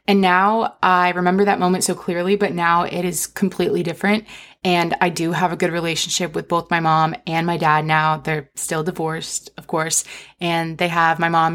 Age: 20-39